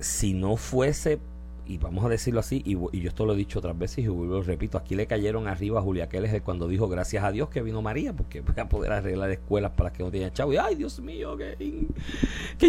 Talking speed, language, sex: 245 wpm, Spanish, male